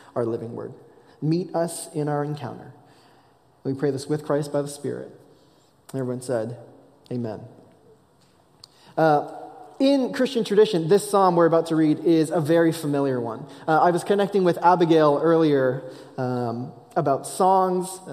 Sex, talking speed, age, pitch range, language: male, 145 wpm, 20-39, 145-185 Hz, English